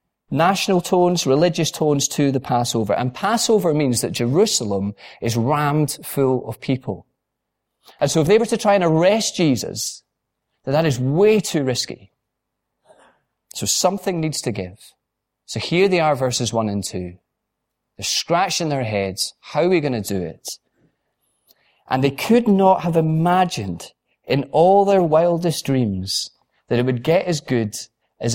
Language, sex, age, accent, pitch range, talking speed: English, male, 30-49, British, 115-175 Hz, 160 wpm